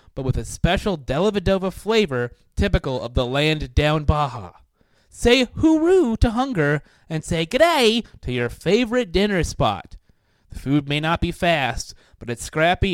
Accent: American